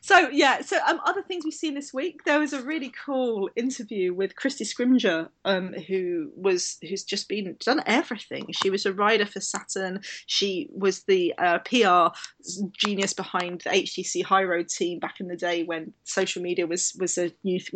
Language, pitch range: English, 180-215 Hz